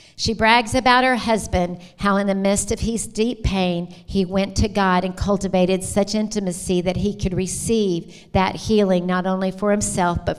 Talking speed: 185 wpm